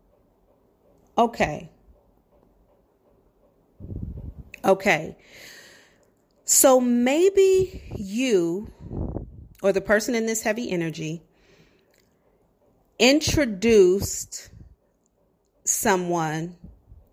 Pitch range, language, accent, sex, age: 185-225 Hz, English, American, female, 40-59